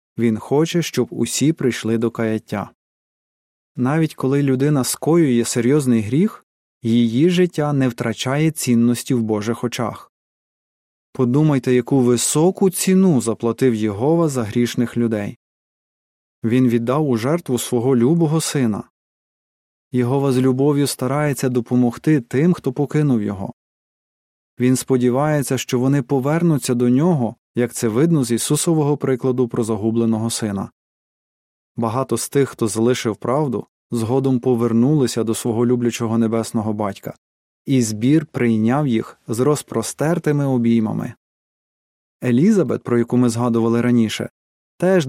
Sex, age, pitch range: male, 20-39, 115-140 Hz